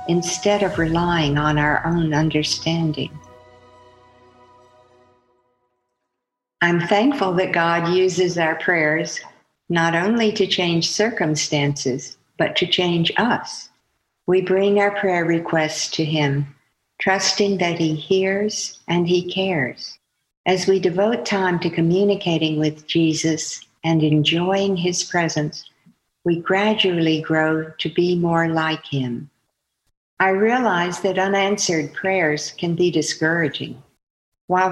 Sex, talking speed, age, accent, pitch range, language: female, 115 wpm, 60-79, American, 155-190 Hz, English